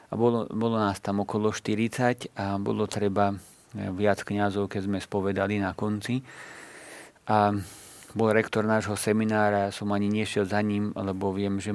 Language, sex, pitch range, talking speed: Slovak, male, 100-110 Hz, 155 wpm